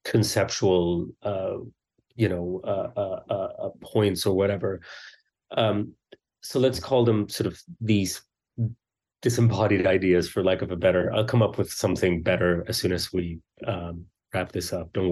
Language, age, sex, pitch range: English, 30-49, male, 100-120 Hz